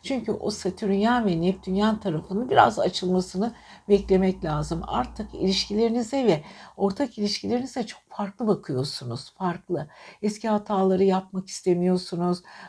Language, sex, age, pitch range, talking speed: Turkish, female, 60-79, 180-215 Hz, 110 wpm